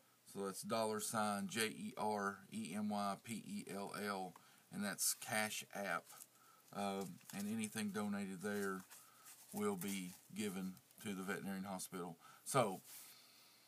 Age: 40-59